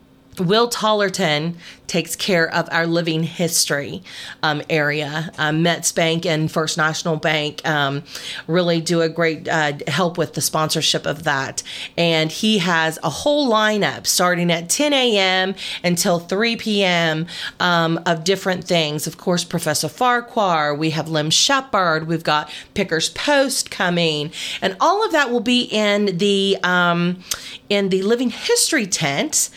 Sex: female